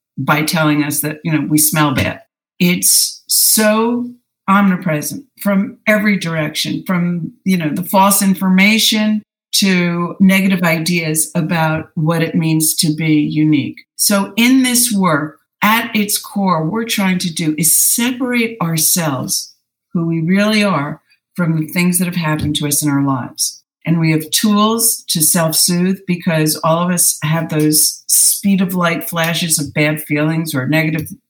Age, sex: 50-69, female